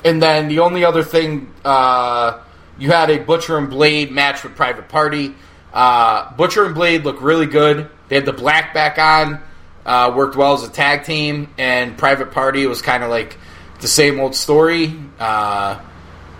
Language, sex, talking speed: English, male, 180 wpm